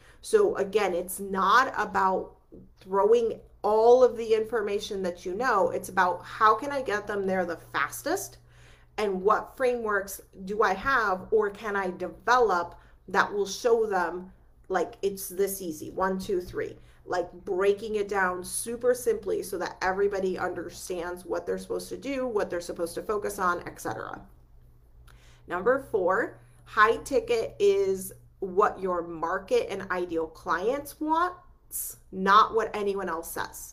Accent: American